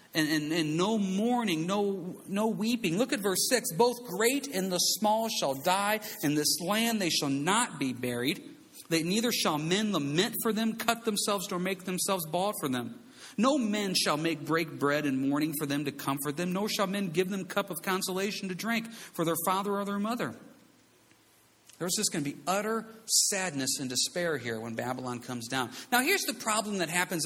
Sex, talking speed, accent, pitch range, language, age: male, 200 wpm, American, 165-230 Hz, English, 50-69